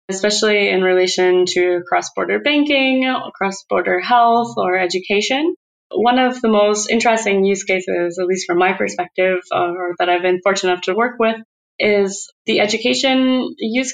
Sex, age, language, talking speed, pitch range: female, 20-39, English, 150 wpm, 190-235 Hz